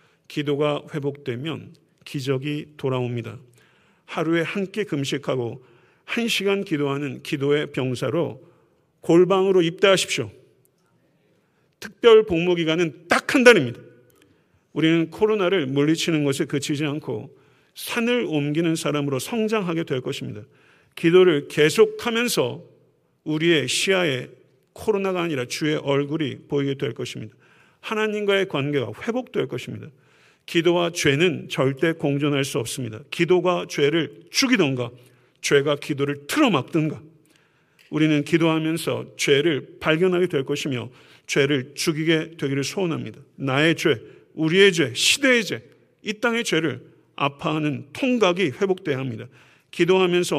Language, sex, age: Korean, male, 50-69